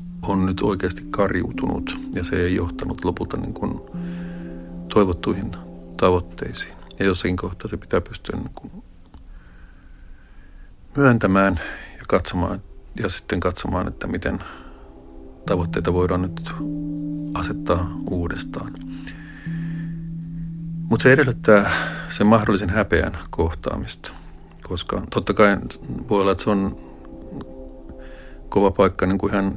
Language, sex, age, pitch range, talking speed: Finnish, male, 50-69, 75-105 Hz, 95 wpm